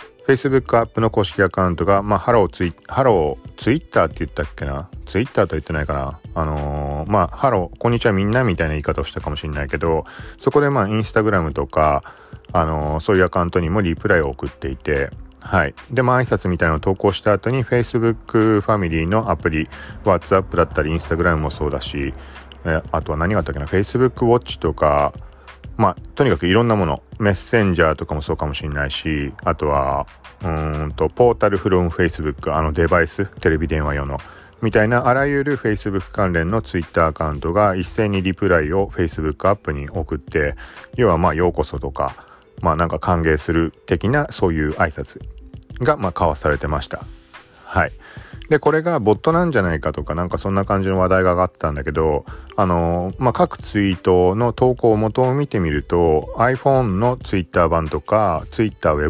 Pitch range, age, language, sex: 80-110 Hz, 40-59, Japanese, male